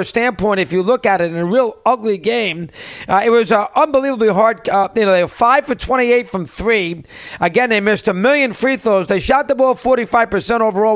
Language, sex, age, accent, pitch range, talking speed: English, male, 40-59, American, 195-245 Hz, 225 wpm